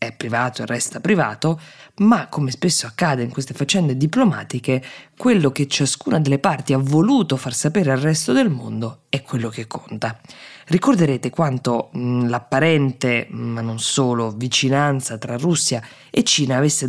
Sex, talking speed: female, 155 wpm